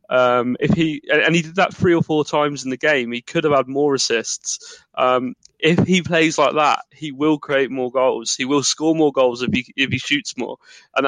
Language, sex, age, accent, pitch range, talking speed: English, male, 20-39, British, 125-150 Hz, 230 wpm